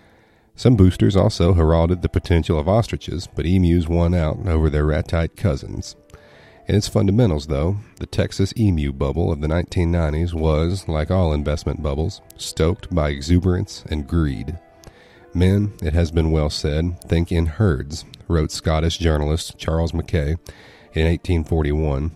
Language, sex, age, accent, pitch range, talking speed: English, male, 40-59, American, 75-90 Hz, 145 wpm